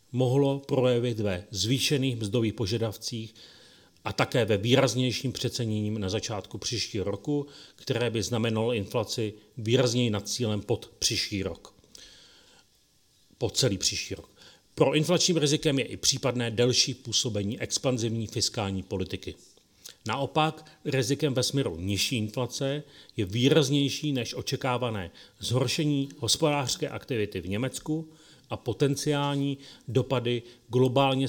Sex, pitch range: male, 110-135 Hz